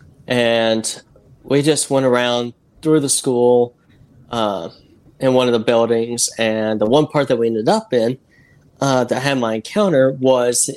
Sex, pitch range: male, 115-135 Hz